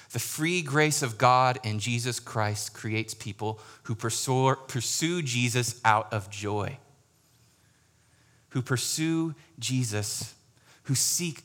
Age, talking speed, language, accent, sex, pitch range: 30-49, 110 wpm, English, American, male, 115-140 Hz